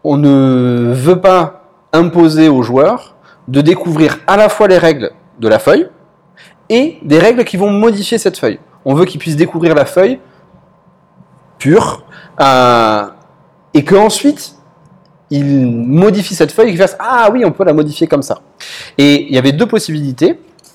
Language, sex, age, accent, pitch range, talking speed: French, male, 30-49, French, 145-195 Hz, 170 wpm